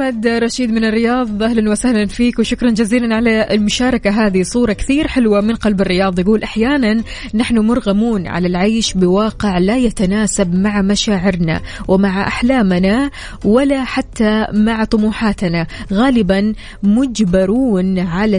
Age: 20-39